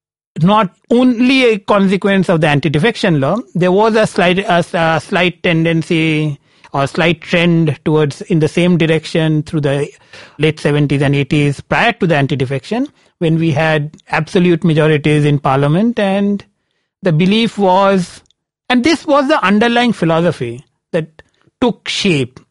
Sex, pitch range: male, 155-210 Hz